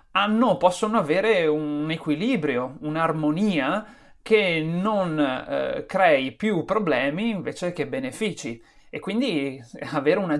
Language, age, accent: Italian, 30-49, native